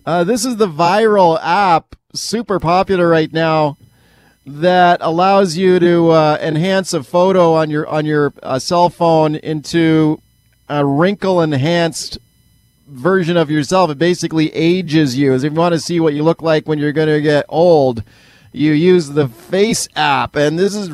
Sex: male